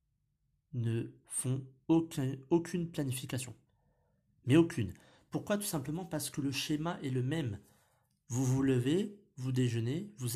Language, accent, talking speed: French, French, 125 wpm